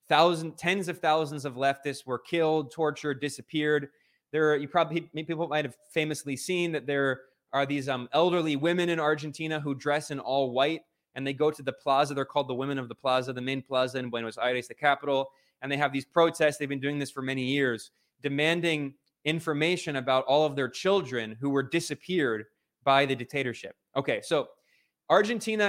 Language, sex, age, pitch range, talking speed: English, male, 20-39, 140-170 Hz, 185 wpm